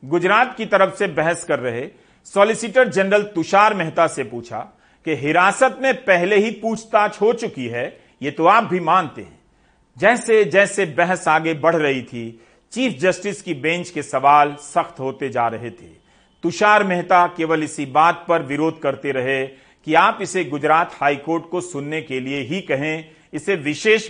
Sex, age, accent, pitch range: male, 50-69, native, 145-210 Hz